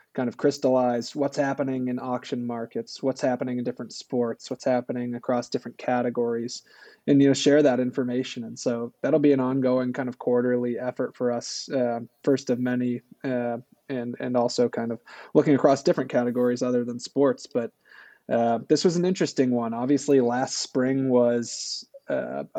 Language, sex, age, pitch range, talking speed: English, male, 20-39, 120-135 Hz, 175 wpm